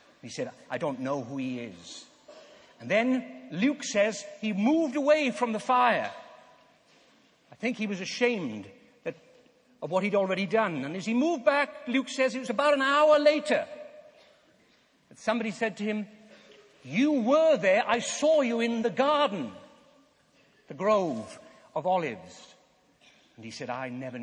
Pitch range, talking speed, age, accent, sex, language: 175-290 Hz, 160 wpm, 60-79, British, male, English